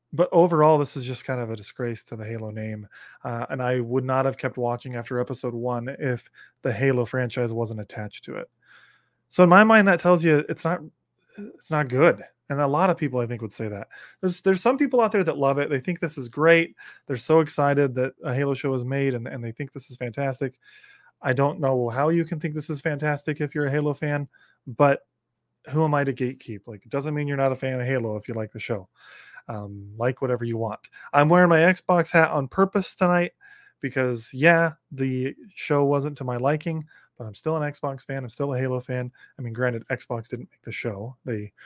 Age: 20-39